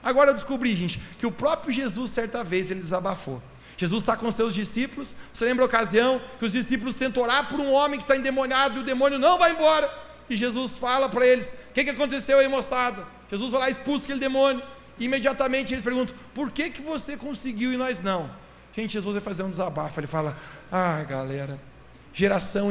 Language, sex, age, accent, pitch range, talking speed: Portuguese, male, 40-59, Brazilian, 180-255 Hz, 200 wpm